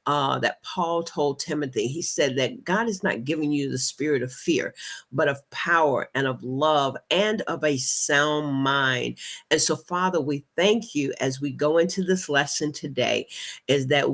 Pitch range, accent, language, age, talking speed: 135-185 Hz, American, English, 40-59, 180 wpm